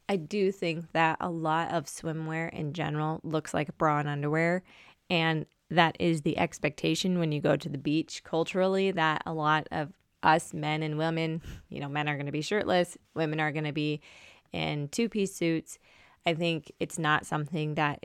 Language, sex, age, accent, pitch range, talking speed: English, female, 20-39, American, 150-175 Hz, 190 wpm